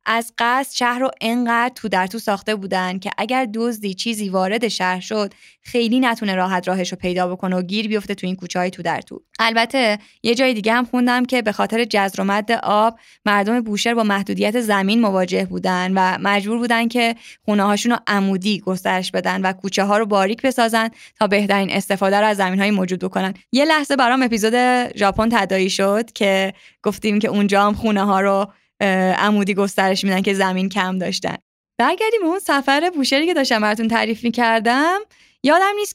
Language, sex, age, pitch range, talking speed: Persian, female, 20-39, 195-250 Hz, 180 wpm